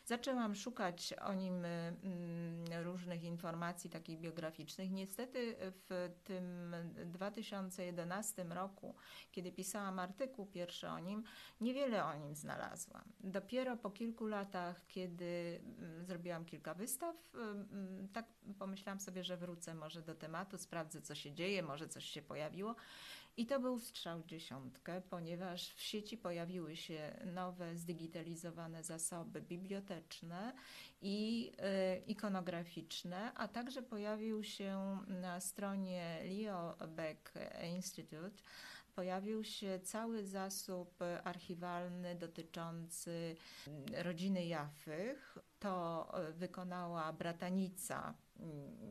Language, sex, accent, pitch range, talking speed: Polish, female, native, 170-200 Hz, 105 wpm